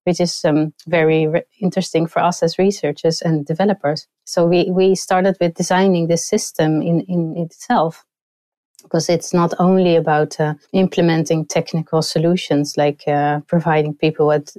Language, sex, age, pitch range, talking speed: English, female, 30-49, 155-180 Hz, 150 wpm